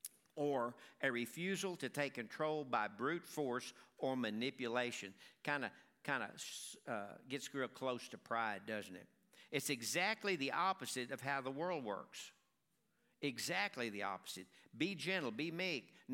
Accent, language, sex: American, English, male